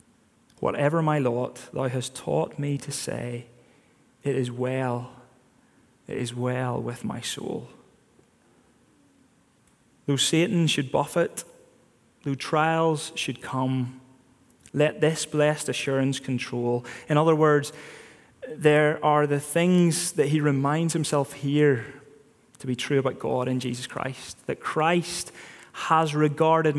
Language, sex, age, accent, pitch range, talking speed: English, male, 20-39, British, 125-150 Hz, 125 wpm